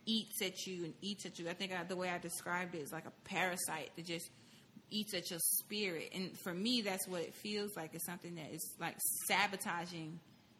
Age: 20-39